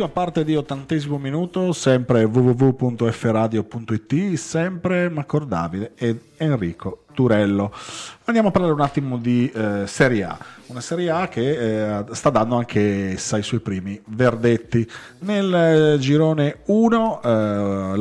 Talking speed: 125 wpm